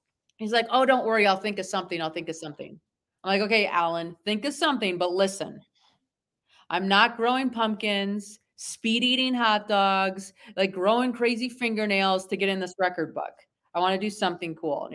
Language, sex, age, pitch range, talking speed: English, female, 30-49, 190-280 Hz, 190 wpm